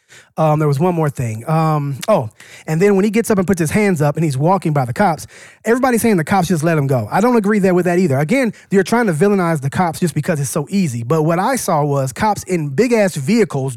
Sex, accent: male, American